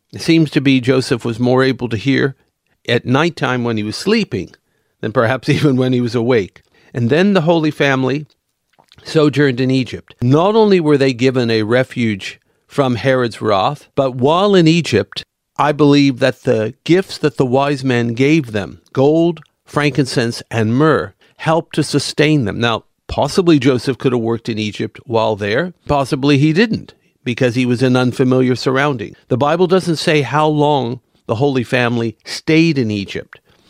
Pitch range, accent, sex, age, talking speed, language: 120-150 Hz, American, male, 50-69, 170 wpm, English